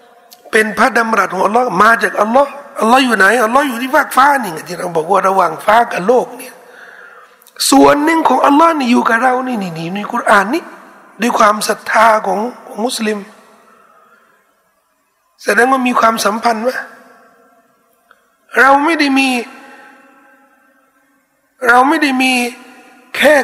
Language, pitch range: Thai, 225-280 Hz